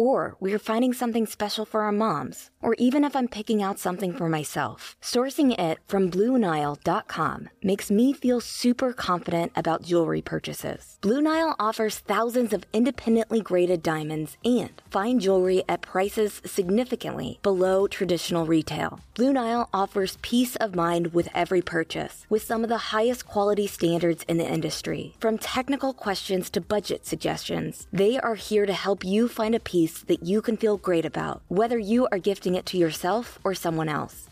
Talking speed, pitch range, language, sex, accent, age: 170 wpm, 185-235 Hz, English, female, American, 20-39